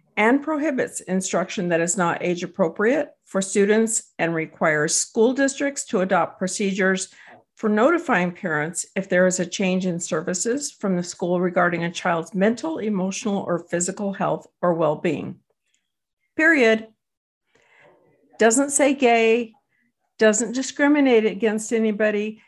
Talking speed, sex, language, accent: 130 wpm, female, English, American